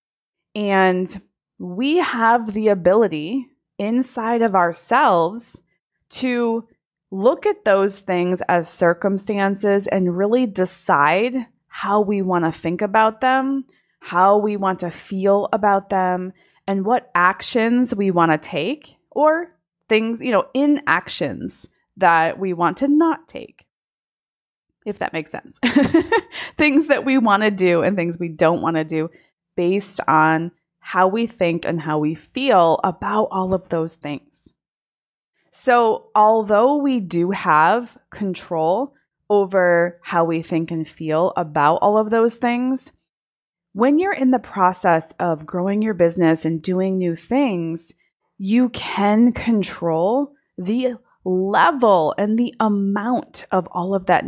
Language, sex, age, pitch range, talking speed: English, female, 20-39, 175-240 Hz, 135 wpm